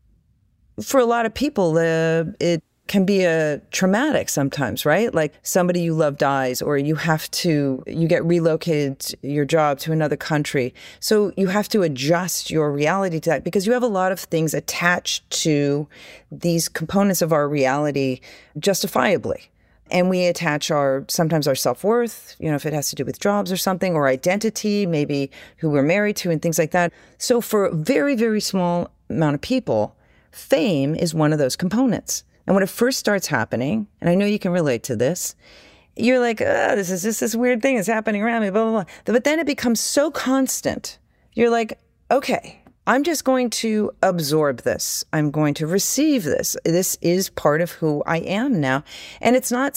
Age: 40-59